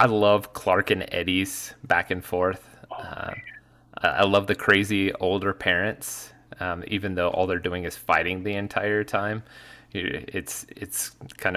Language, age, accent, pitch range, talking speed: English, 20-39, American, 85-100 Hz, 150 wpm